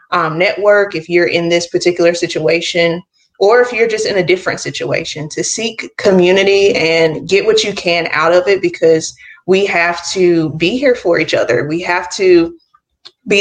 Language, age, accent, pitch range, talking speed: English, 20-39, American, 170-195 Hz, 180 wpm